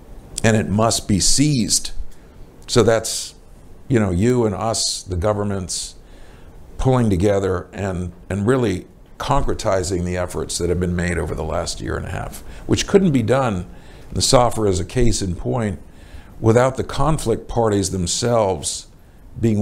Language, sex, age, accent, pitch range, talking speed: English, male, 50-69, American, 90-110 Hz, 155 wpm